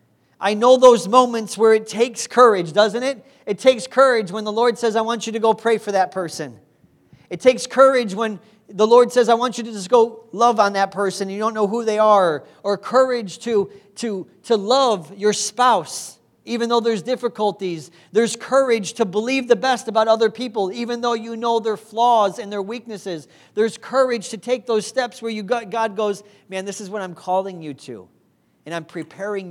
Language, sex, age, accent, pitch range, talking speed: English, male, 40-59, American, 170-225 Hz, 205 wpm